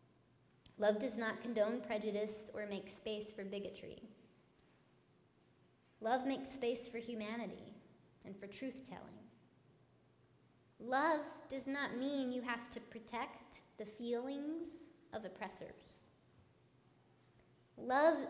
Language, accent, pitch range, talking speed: English, American, 205-245 Hz, 100 wpm